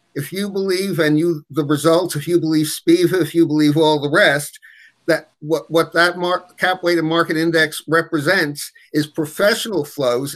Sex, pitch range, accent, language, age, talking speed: male, 150-175 Hz, American, English, 50-69, 175 wpm